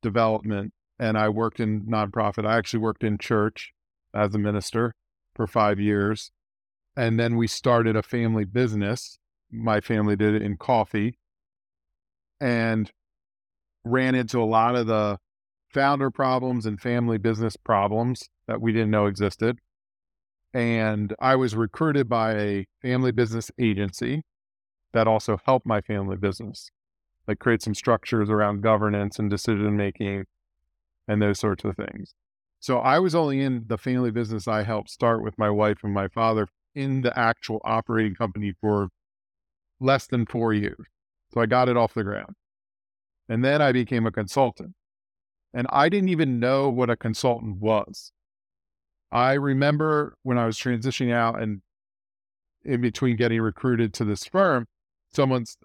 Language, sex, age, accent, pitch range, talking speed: English, male, 40-59, American, 105-125 Hz, 150 wpm